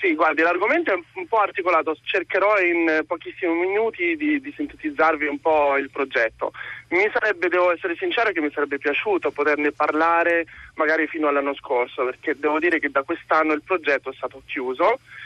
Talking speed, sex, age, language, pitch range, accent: 175 wpm, male, 30-49, Italian, 145-205 Hz, native